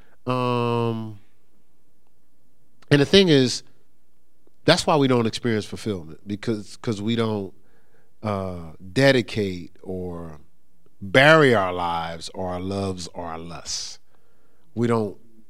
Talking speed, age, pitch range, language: 110 wpm, 40-59, 95-120 Hz, English